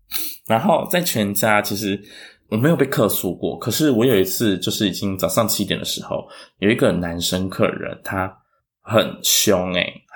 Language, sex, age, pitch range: Chinese, male, 20-39, 95-125 Hz